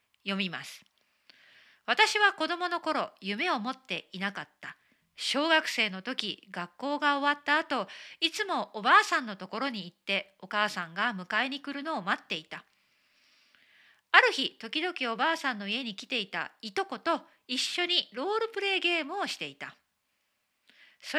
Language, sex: Japanese, female